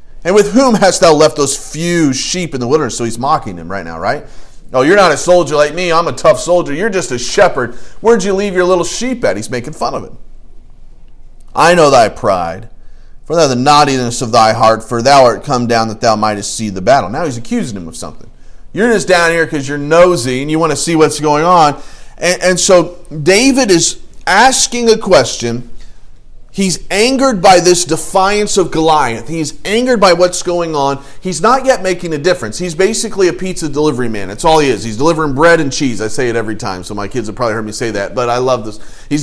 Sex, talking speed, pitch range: male, 230 wpm, 130-190 Hz